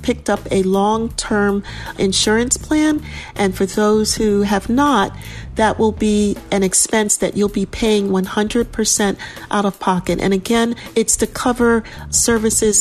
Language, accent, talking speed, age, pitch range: English, American, 145 wpm, 40-59, 195-230 Hz